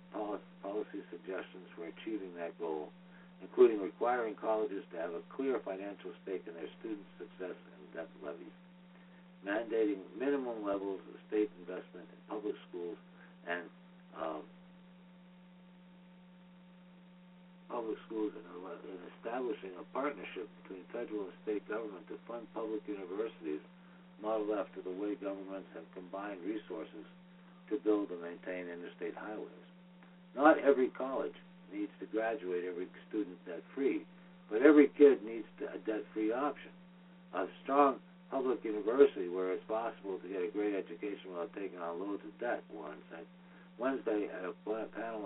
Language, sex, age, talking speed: English, male, 60-79, 130 wpm